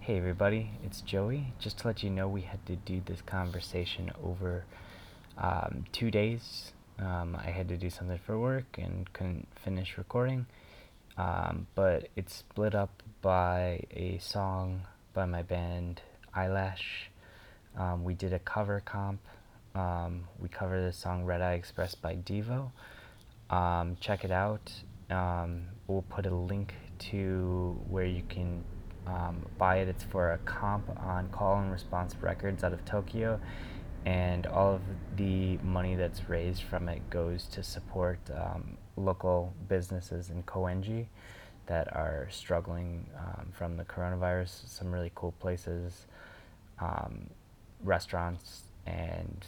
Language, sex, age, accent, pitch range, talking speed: English, male, 20-39, American, 90-100 Hz, 145 wpm